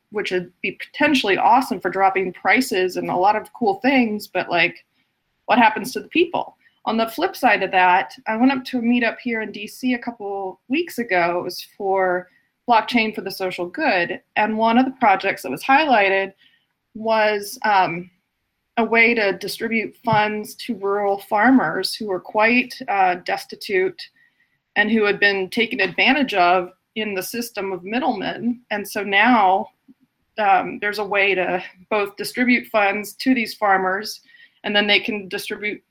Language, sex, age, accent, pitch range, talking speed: English, female, 20-39, American, 190-240 Hz, 170 wpm